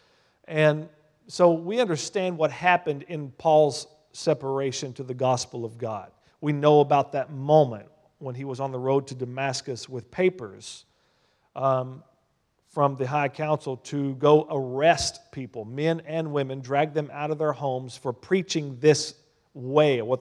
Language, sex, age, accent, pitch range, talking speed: English, male, 40-59, American, 130-150 Hz, 155 wpm